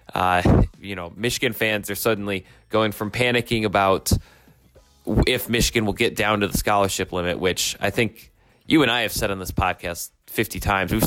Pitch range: 90-115 Hz